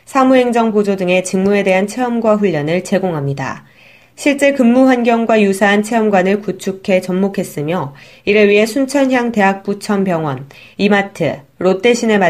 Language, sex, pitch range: Korean, female, 180-230 Hz